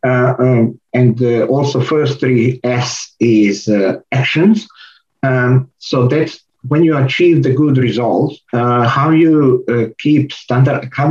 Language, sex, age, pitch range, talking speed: English, male, 50-69, 115-135 Hz, 140 wpm